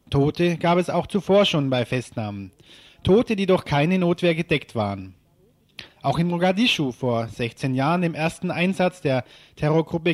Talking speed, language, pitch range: 155 wpm, German, 135-180 Hz